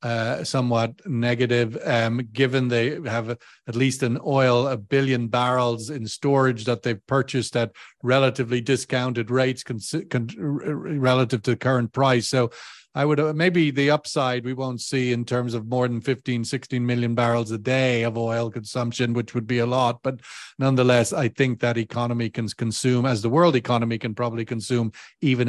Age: 40-59